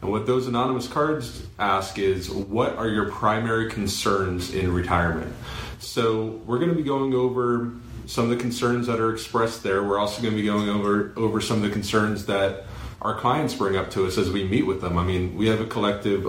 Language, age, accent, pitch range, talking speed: English, 30-49, American, 100-120 Hz, 215 wpm